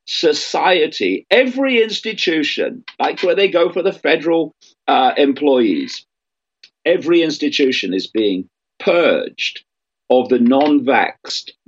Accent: British